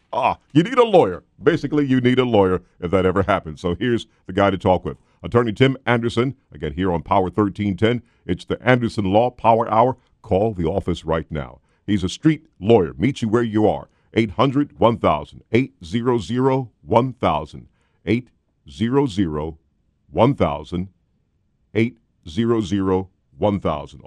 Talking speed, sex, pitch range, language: 130 wpm, male, 85-115 Hz, English